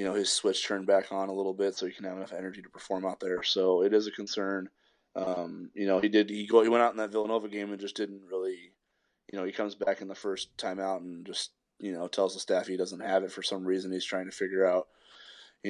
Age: 20-39